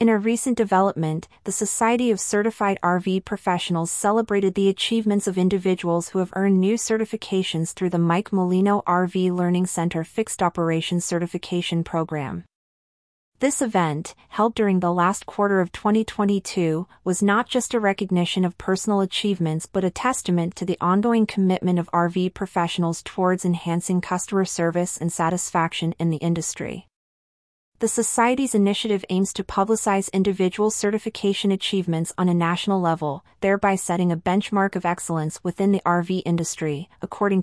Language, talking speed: English, 145 wpm